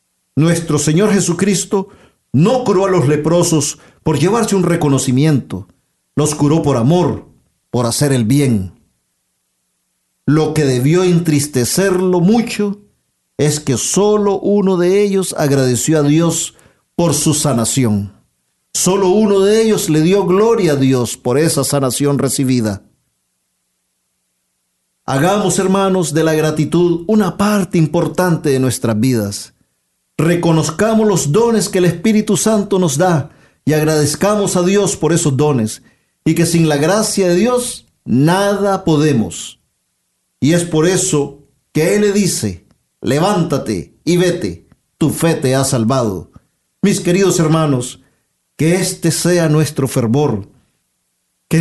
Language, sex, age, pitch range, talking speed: Spanish, male, 50-69, 125-180 Hz, 130 wpm